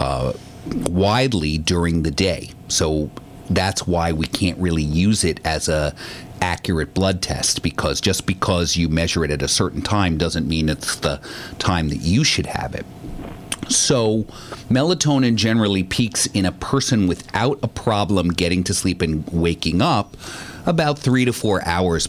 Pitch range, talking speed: 85-105 Hz, 160 wpm